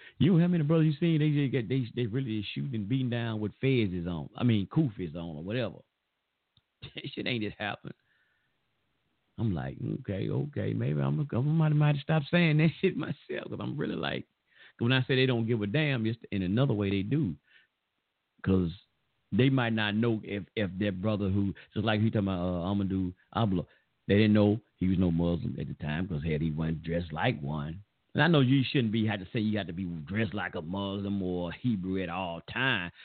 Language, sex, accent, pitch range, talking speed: English, male, American, 90-120 Hz, 225 wpm